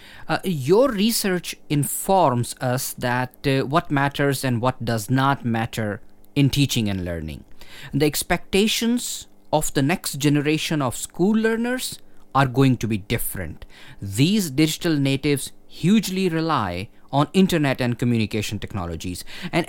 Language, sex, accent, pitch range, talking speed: English, male, Indian, 115-165 Hz, 130 wpm